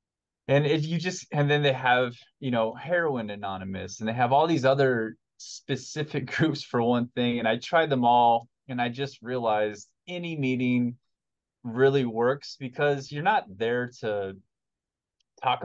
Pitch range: 110-130 Hz